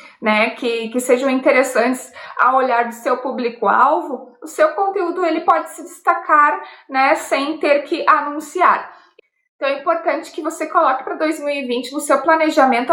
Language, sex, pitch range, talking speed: Portuguese, female, 240-320 Hz, 160 wpm